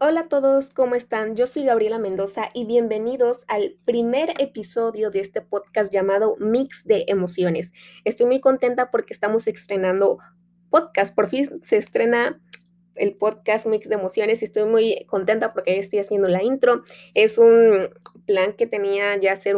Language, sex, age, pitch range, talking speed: Spanish, female, 20-39, 190-240 Hz, 160 wpm